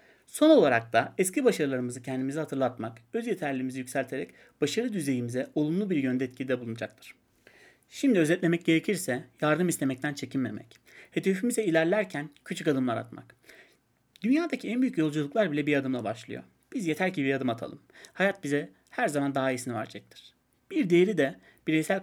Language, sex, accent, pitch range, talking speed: Turkish, male, native, 130-175 Hz, 145 wpm